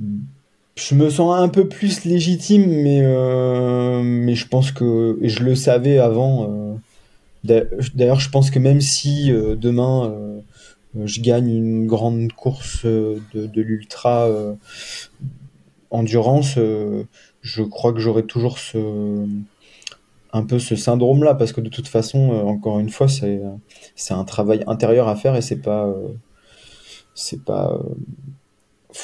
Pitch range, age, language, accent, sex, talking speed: 115-135 Hz, 20-39, French, French, male, 150 wpm